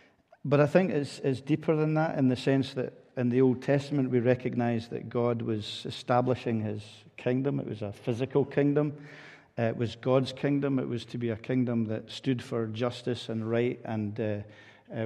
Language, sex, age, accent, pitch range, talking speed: English, male, 50-69, British, 115-135 Hz, 190 wpm